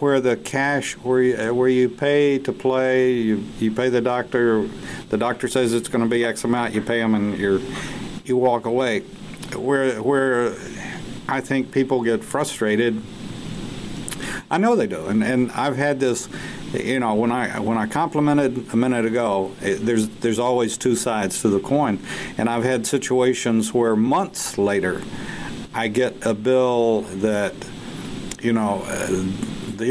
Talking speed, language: 165 wpm, English